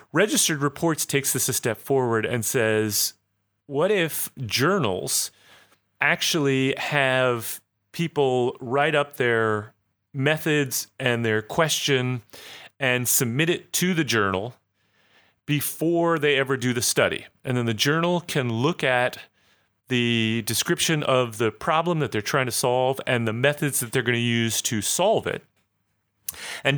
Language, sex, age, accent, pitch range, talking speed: English, male, 30-49, American, 120-145 Hz, 140 wpm